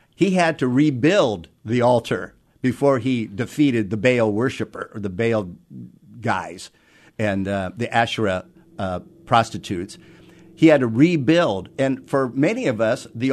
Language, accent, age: English, American, 50-69